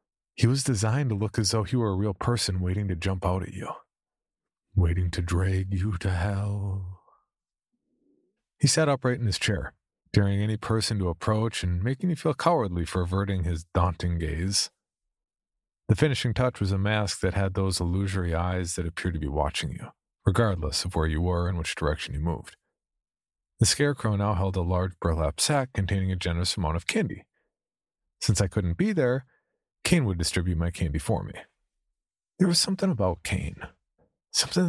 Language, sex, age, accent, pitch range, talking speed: English, male, 40-59, American, 90-120 Hz, 180 wpm